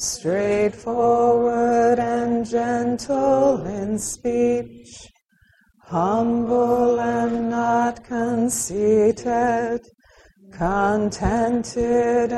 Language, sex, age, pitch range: English, female, 40-59, 215-240 Hz